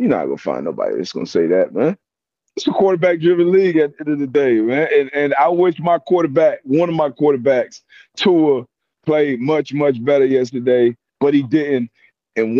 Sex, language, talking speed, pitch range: male, English, 205 wpm, 120-155 Hz